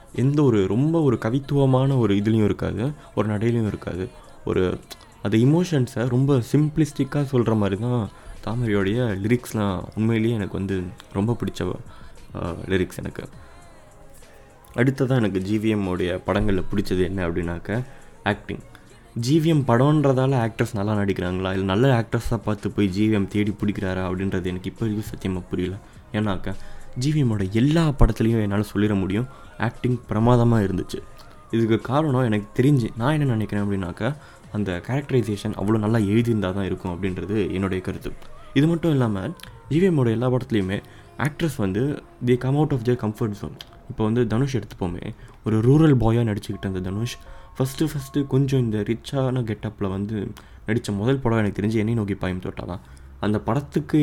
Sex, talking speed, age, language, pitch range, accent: male, 140 wpm, 20-39, Tamil, 100-130 Hz, native